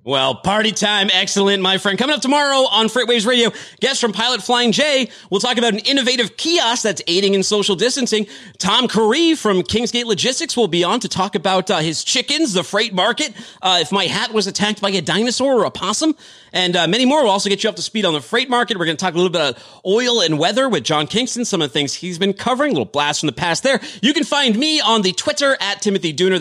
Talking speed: 250 wpm